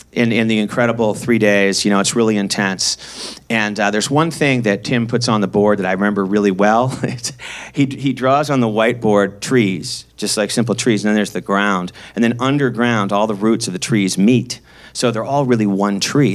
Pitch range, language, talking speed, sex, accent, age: 100-140 Hz, English, 220 wpm, male, American, 40-59